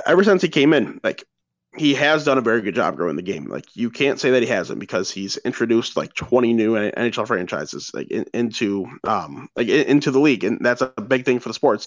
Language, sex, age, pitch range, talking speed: English, male, 20-39, 115-130 Hz, 245 wpm